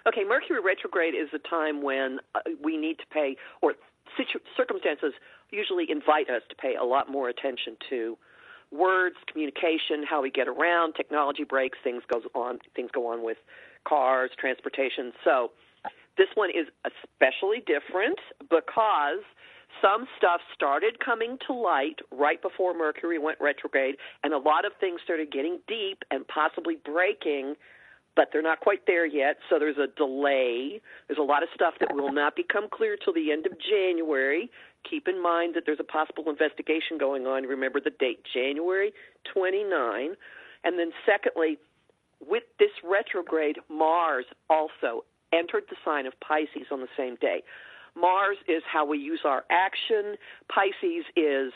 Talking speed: 160 wpm